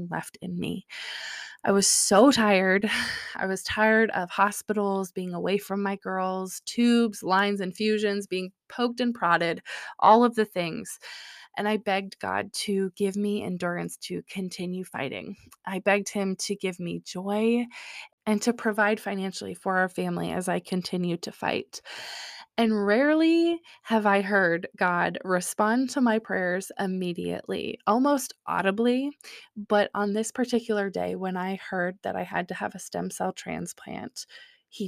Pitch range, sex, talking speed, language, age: 185-225 Hz, female, 155 wpm, English, 20-39